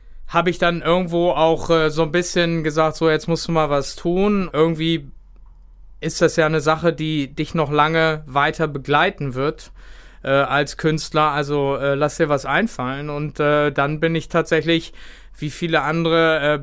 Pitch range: 140-160 Hz